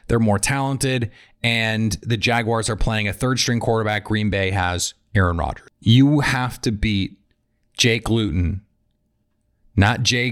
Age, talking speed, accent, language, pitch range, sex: 30-49, 145 wpm, American, English, 105-130 Hz, male